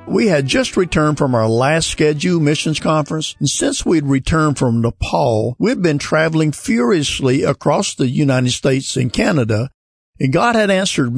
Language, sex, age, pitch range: English, male, 50-69, 130-160 Hz